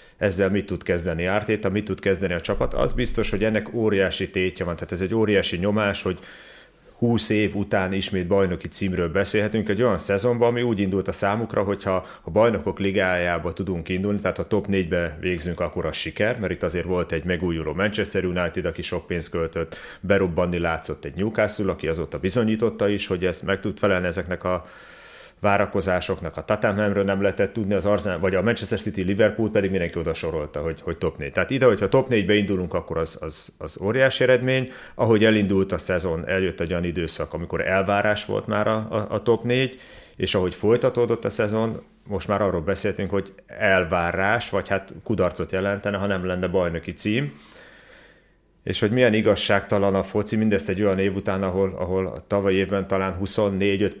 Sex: male